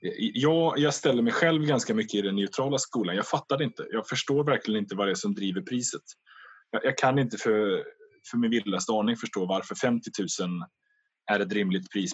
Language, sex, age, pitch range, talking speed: Swedish, male, 20-39, 95-140 Hz, 210 wpm